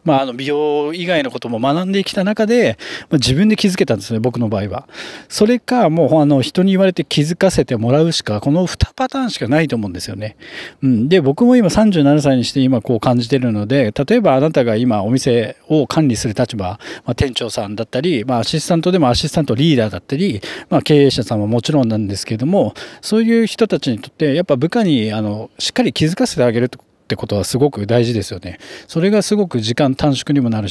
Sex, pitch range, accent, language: male, 120-175 Hz, native, Japanese